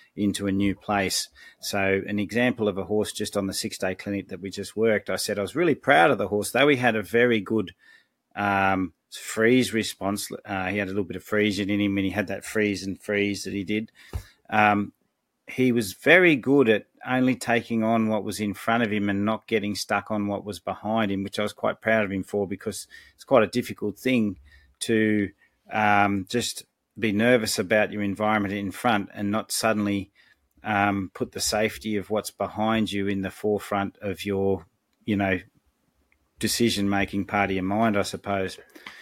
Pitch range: 100-110 Hz